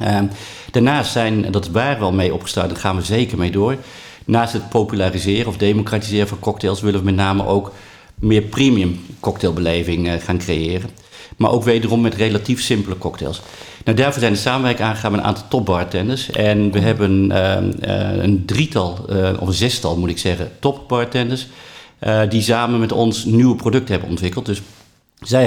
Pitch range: 95-115 Hz